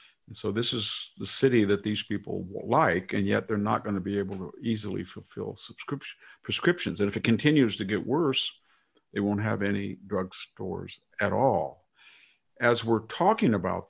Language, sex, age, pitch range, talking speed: English, male, 50-69, 100-115 Hz, 180 wpm